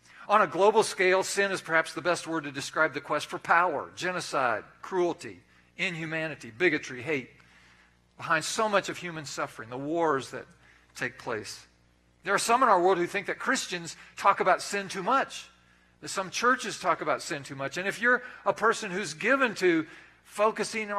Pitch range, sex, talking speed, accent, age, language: 145-195 Hz, male, 185 wpm, American, 50-69, English